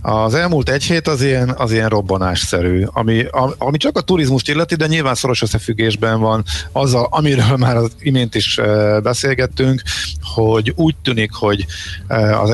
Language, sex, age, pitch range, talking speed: Hungarian, male, 50-69, 100-125 Hz, 155 wpm